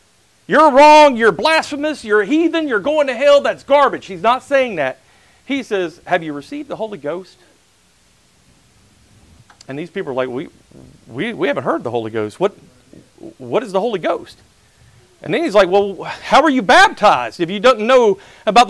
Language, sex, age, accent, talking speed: English, male, 40-59, American, 185 wpm